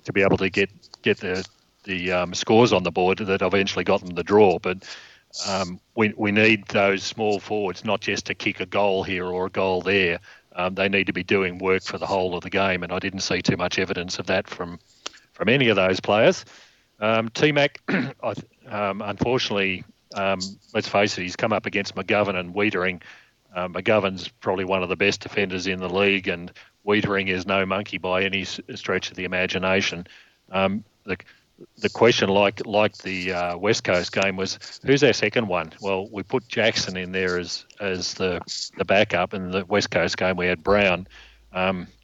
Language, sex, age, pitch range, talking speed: English, male, 40-59, 90-105 Hz, 200 wpm